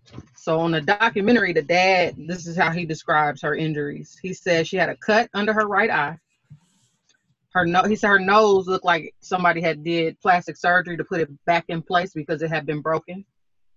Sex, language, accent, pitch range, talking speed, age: female, English, American, 155-195 Hz, 205 wpm, 30-49